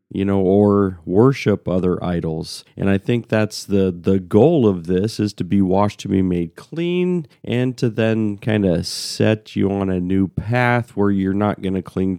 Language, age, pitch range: English, 40-59, 95-115 Hz